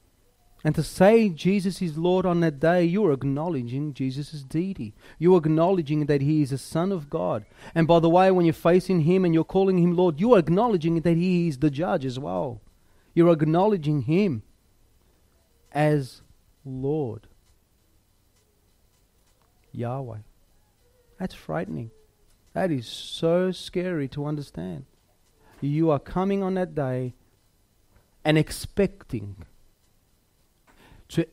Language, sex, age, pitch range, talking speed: English, male, 30-49, 105-170 Hz, 135 wpm